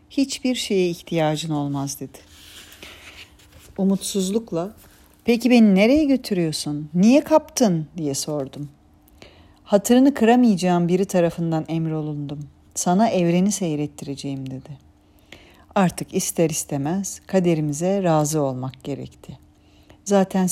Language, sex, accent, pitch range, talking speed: Turkish, female, native, 145-200 Hz, 90 wpm